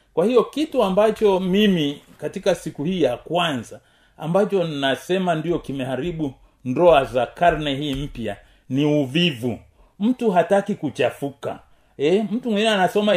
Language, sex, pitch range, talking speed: Swahili, male, 140-205 Hz, 130 wpm